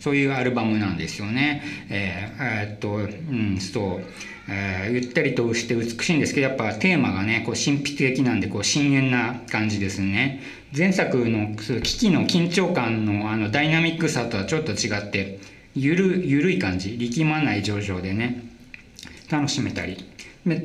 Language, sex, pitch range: Japanese, male, 105-150 Hz